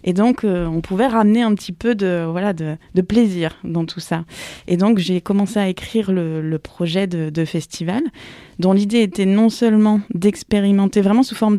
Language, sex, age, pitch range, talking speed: French, female, 20-39, 170-205 Hz, 195 wpm